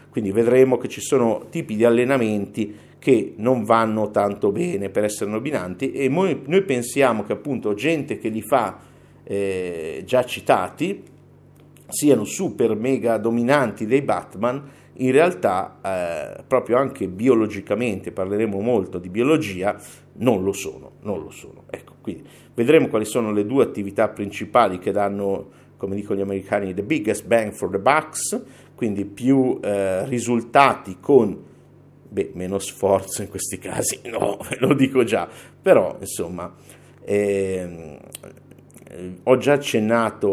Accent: native